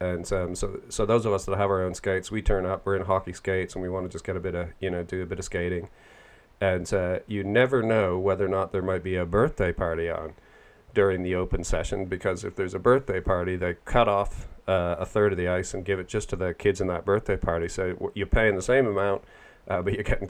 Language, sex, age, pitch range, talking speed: English, male, 40-59, 90-105 Hz, 270 wpm